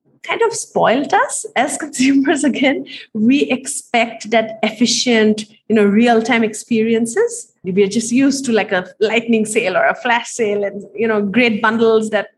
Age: 30-49